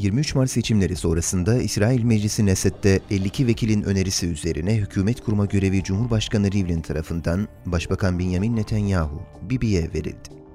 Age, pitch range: 30-49, 95-115 Hz